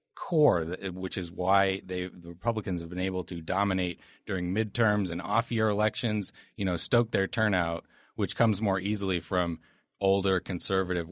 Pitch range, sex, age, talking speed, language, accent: 90-115 Hz, male, 30-49, 155 wpm, English, American